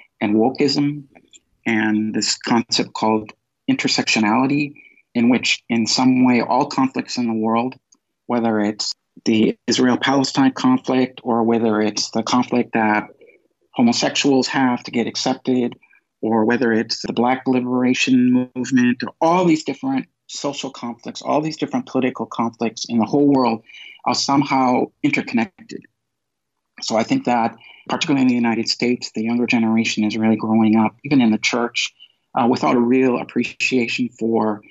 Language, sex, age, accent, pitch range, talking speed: English, male, 50-69, American, 115-140 Hz, 145 wpm